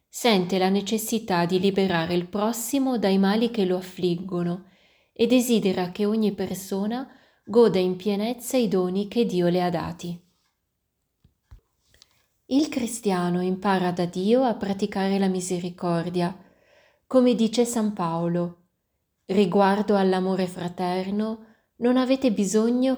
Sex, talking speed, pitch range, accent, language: female, 120 wpm, 180-220 Hz, native, Italian